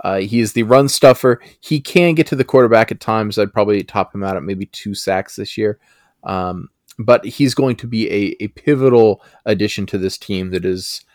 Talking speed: 210 wpm